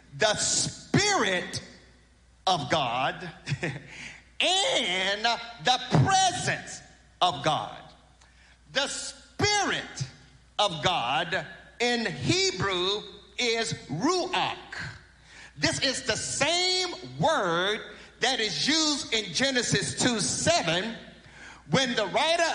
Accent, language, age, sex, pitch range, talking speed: American, English, 50-69, male, 200-290 Hz, 85 wpm